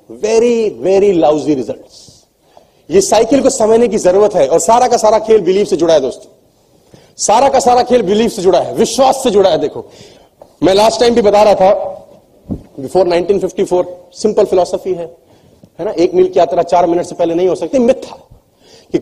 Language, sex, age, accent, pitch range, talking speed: Hindi, male, 40-59, native, 185-245 Hz, 190 wpm